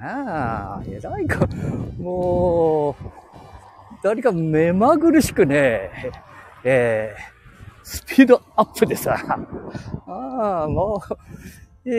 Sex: male